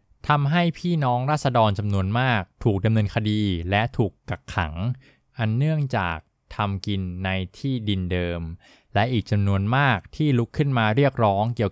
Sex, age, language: male, 20-39, Thai